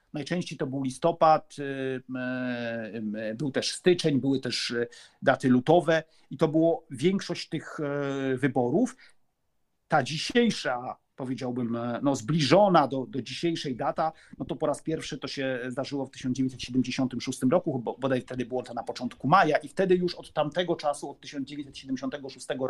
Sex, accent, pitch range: male, native, 130-170 Hz